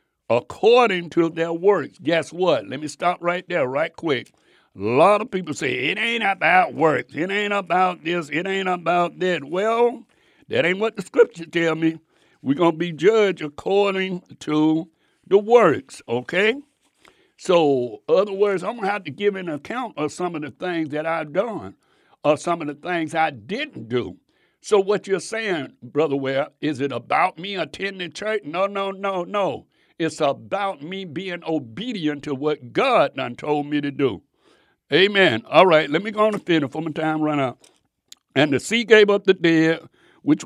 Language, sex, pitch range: English, male, 155-205 Hz